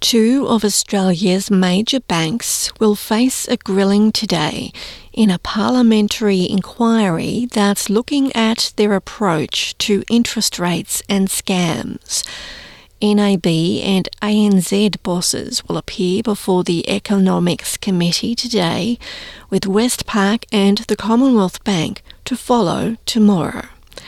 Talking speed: 110 wpm